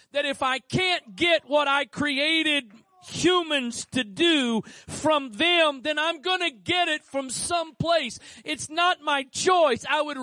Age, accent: 40-59, American